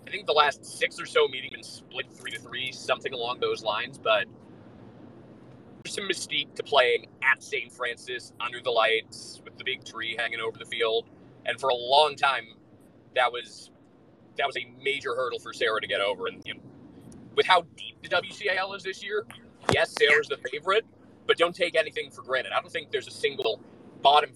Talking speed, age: 200 wpm, 30-49